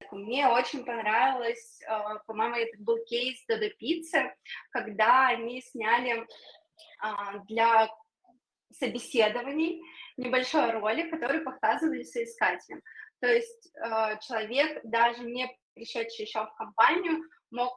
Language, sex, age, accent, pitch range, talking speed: Russian, female, 20-39, native, 220-290 Hz, 100 wpm